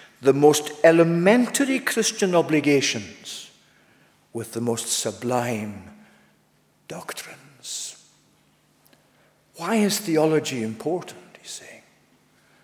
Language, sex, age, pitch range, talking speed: English, male, 50-69, 120-165 Hz, 75 wpm